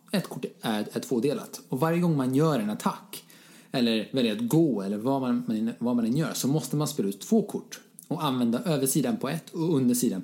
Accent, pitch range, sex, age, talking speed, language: Norwegian, 120-195 Hz, male, 30-49, 210 wpm, Swedish